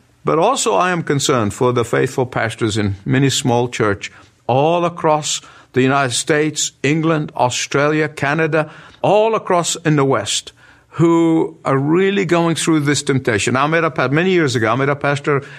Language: English